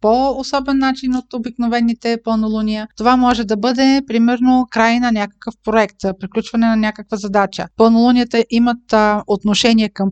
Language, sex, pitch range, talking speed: Bulgarian, female, 210-260 Hz, 130 wpm